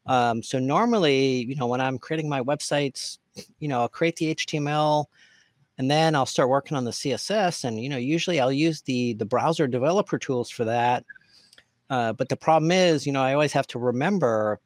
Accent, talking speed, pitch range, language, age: American, 200 wpm, 125-155 Hz, English, 40-59